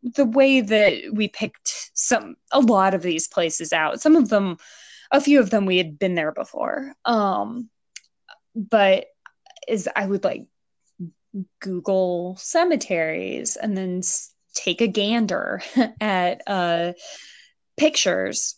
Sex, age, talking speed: female, 20-39, 130 wpm